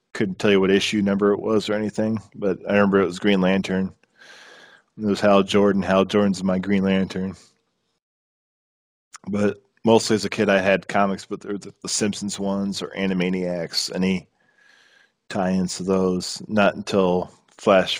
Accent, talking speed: American, 155 wpm